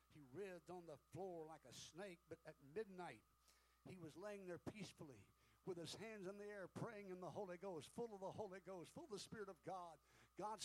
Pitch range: 135-190 Hz